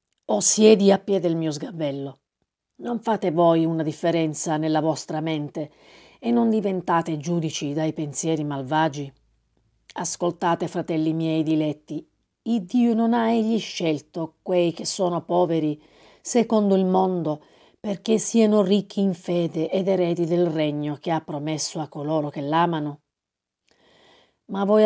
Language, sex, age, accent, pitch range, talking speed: Italian, female, 40-59, native, 155-200 Hz, 140 wpm